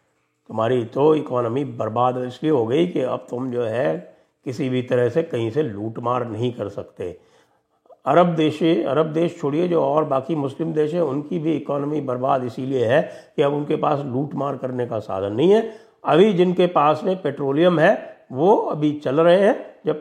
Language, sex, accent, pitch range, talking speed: English, male, Indian, 125-170 Hz, 180 wpm